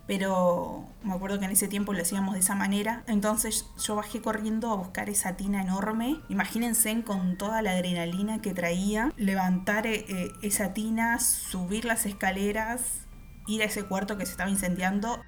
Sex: female